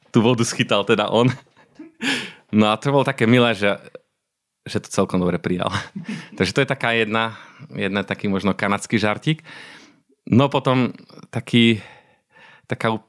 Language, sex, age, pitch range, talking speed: Slovak, male, 30-49, 95-115 Hz, 140 wpm